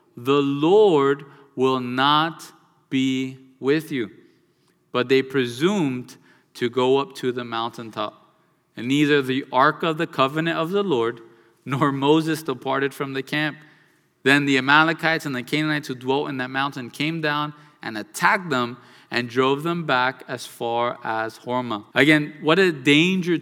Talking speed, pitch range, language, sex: 155 wpm, 135-190 Hz, English, male